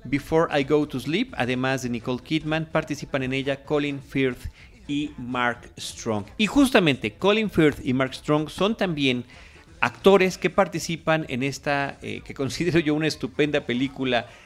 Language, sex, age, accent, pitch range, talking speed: Spanish, male, 40-59, Mexican, 115-155 Hz, 160 wpm